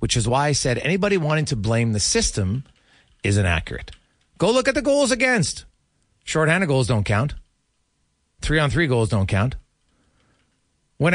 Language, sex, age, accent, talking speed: English, male, 40-59, American, 150 wpm